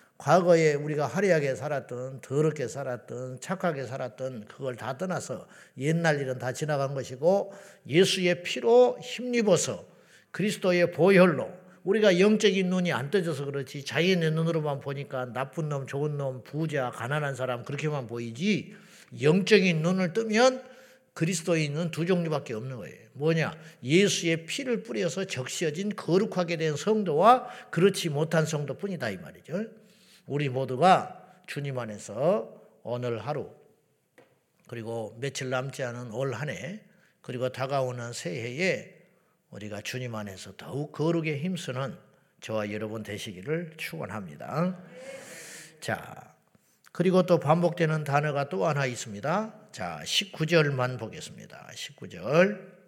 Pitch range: 130-185 Hz